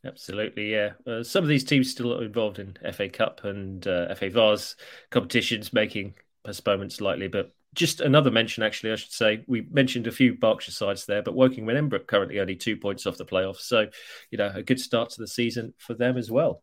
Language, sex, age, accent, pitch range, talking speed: English, male, 30-49, British, 110-150 Hz, 215 wpm